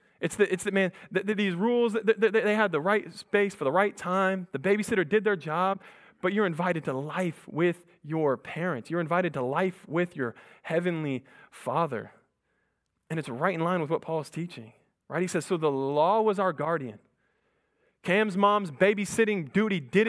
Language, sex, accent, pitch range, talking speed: English, male, American, 155-195 Hz, 180 wpm